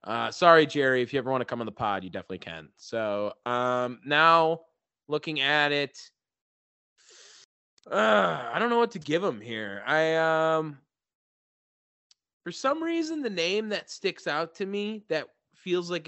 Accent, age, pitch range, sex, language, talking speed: American, 20-39, 125-165 Hz, male, English, 170 wpm